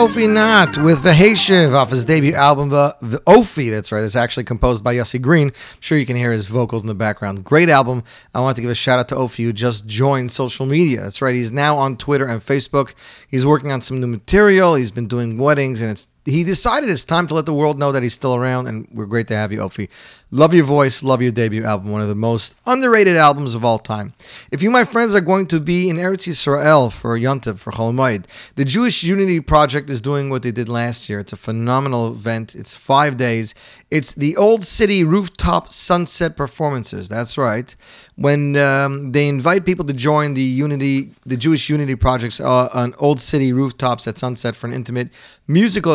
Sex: male